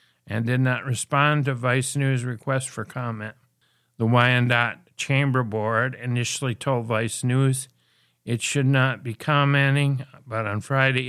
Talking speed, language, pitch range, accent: 140 wpm, English, 120-135 Hz, American